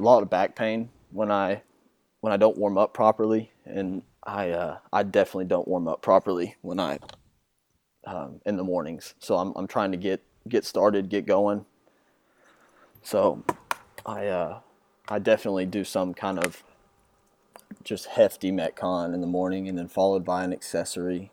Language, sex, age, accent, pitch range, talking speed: English, male, 20-39, American, 95-105 Hz, 165 wpm